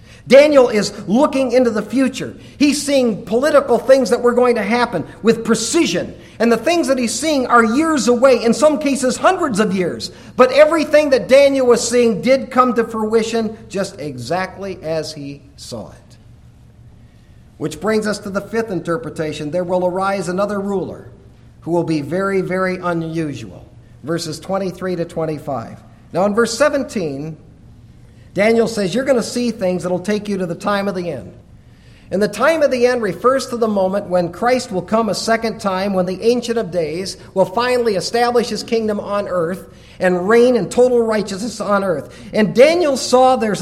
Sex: male